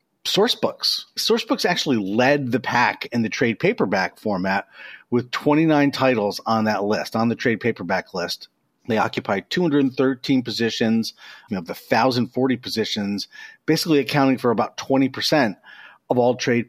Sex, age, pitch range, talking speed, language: male, 40-59, 110-145 Hz, 135 wpm, English